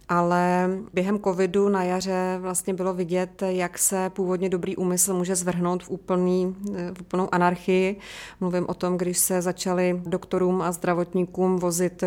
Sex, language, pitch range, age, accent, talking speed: female, Czech, 175-185 Hz, 30-49, native, 150 wpm